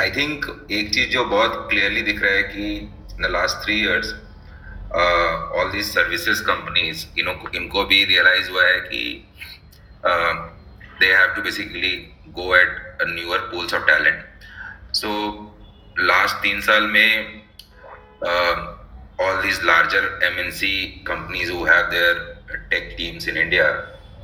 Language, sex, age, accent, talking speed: Hindi, male, 30-49, native, 120 wpm